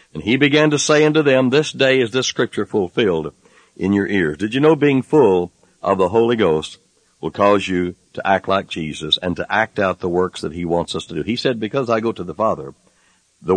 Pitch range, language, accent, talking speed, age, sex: 95-130 Hz, English, American, 235 wpm, 60-79, male